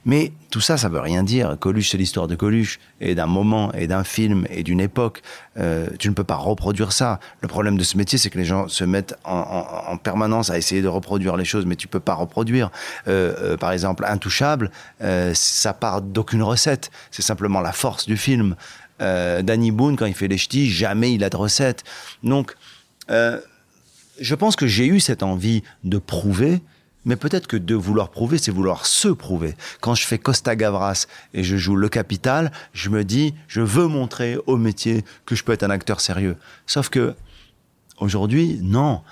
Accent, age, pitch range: French, 40-59, 95-130 Hz